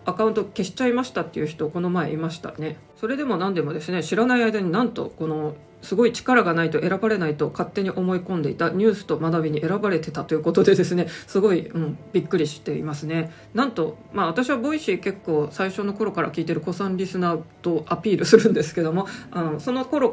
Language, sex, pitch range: Japanese, female, 155-205 Hz